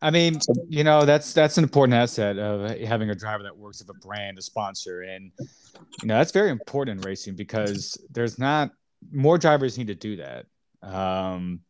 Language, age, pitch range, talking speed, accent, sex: English, 30-49, 105-135 Hz, 195 wpm, American, male